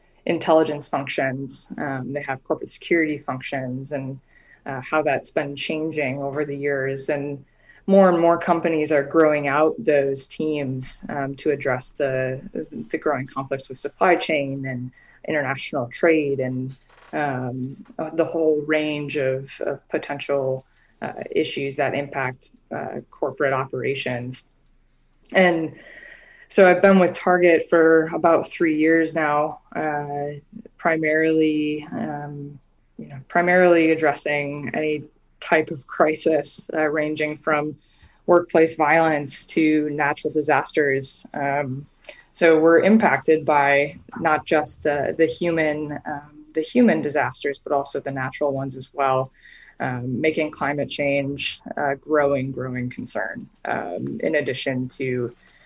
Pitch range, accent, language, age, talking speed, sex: 135-160 Hz, American, English, 20-39, 130 wpm, female